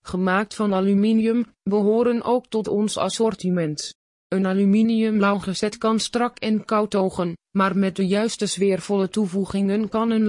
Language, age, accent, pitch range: Dutch, 20-39, Dutch, 195-225 Hz